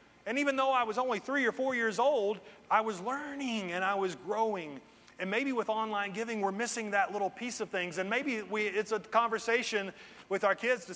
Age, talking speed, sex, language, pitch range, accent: 30-49, 215 wpm, male, English, 180-225 Hz, American